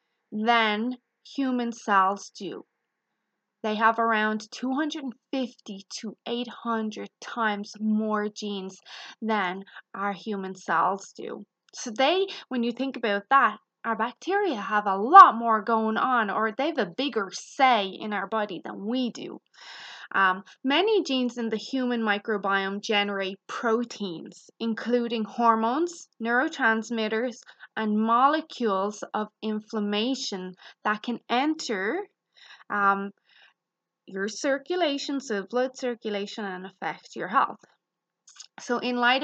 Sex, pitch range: female, 205-250 Hz